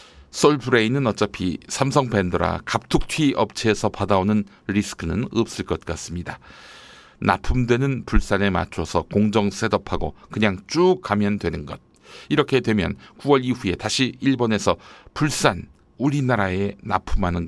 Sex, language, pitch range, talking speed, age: male, English, 90-120 Hz, 100 wpm, 60-79